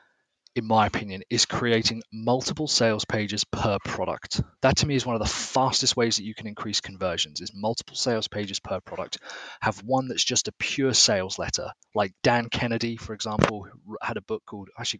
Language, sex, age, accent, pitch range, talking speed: English, male, 30-49, British, 110-125 Hz, 190 wpm